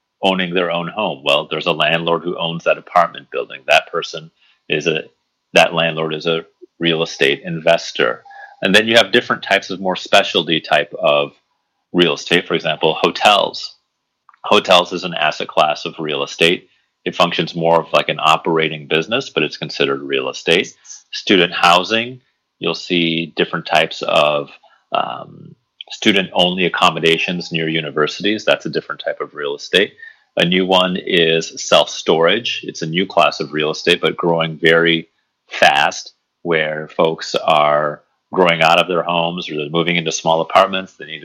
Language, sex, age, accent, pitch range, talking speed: English, male, 30-49, American, 80-95 Hz, 165 wpm